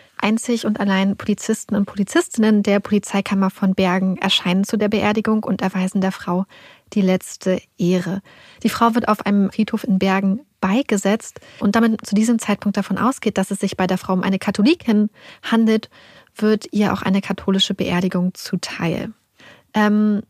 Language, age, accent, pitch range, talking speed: German, 30-49, German, 195-220 Hz, 165 wpm